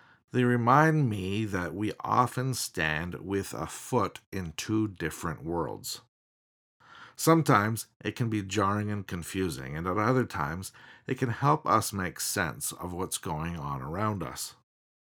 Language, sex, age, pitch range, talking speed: English, male, 50-69, 90-120 Hz, 145 wpm